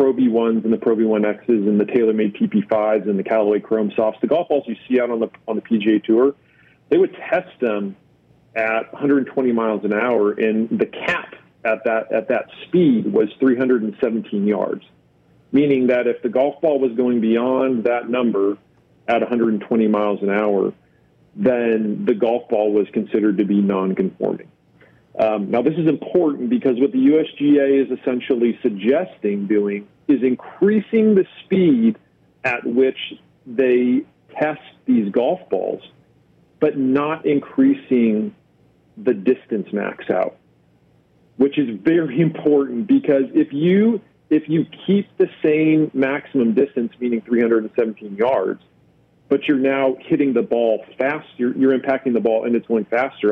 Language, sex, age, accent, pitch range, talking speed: English, male, 40-59, American, 105-140 Hz, 150 wpm